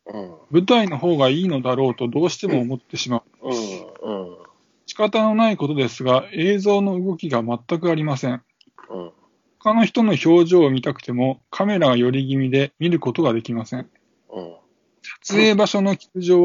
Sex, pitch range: male, 125-180 Hz